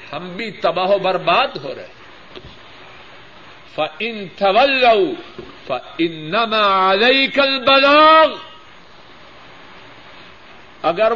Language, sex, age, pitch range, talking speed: Urdu, male, 50-69, 175-290 Hz, 70 wpm